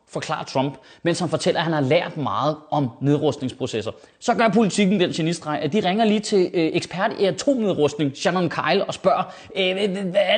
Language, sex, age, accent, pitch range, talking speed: Danish, male, 30-49, native, 150-210 Hz, 180 wpm